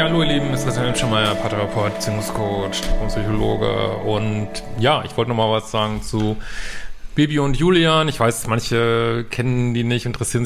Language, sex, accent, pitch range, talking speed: German, male, German, 110-125 Hz, 160 wpm